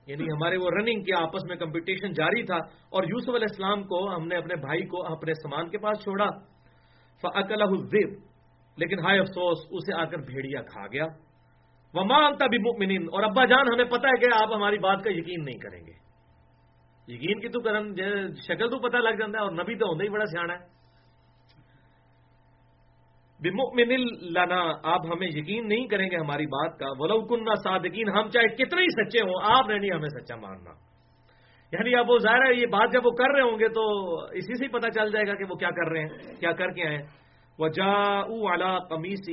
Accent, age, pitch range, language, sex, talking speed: Indian, 40-59, 160-215 Hz, English, male, 165 wpm